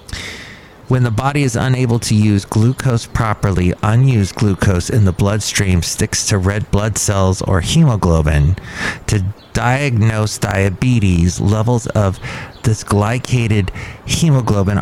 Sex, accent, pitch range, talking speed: male, American, 100-120 Hz, 115 wpm